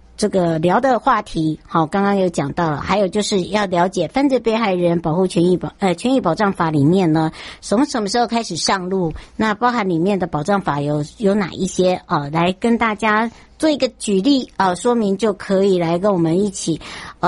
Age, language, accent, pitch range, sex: 60-79, Chinese, American, 170-220 Hz, male